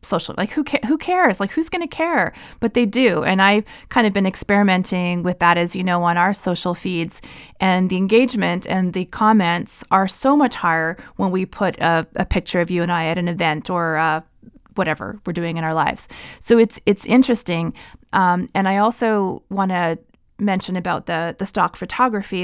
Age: 30-49